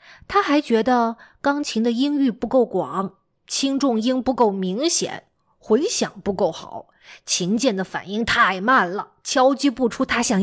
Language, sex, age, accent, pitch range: Chinese, female, 20-39, native, 205-280 Hz